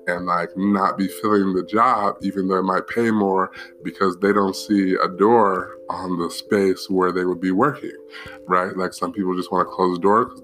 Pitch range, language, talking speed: 90-105 Hz, English, 220 wpm